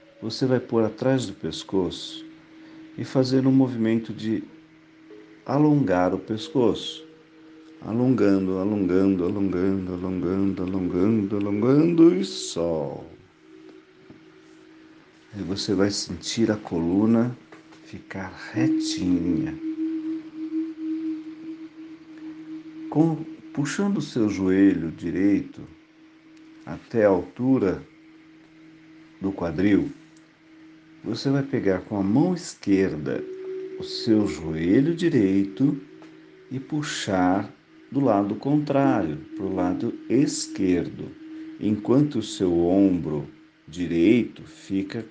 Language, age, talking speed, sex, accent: Portuguese, 50-69, 90 wpm, male, Brazilian